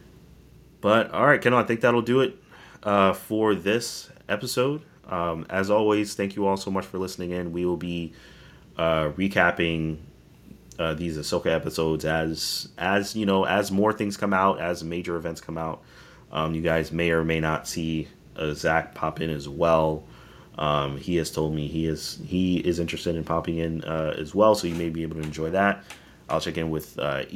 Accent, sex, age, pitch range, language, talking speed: American, male, 30-49, 80-100 Hz, English, 195 wpm